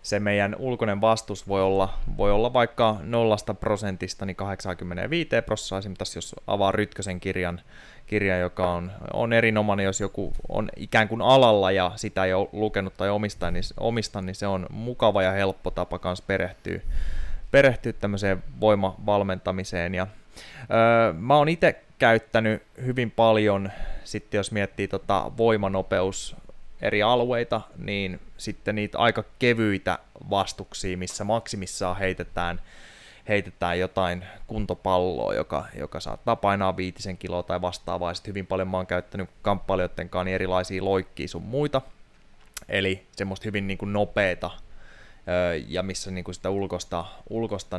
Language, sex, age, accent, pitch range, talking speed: Finnish, male, 20-39, native, 90-110 Hz, 135 wpm